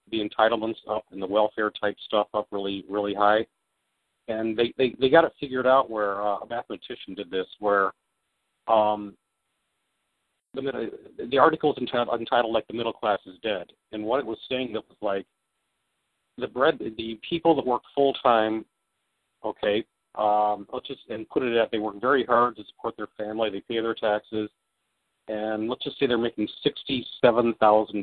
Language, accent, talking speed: English, American, 180 wpm